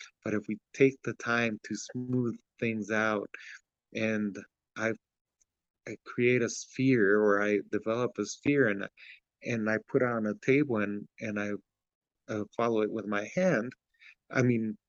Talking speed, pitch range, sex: 160 wpm, 105-130 Hz, male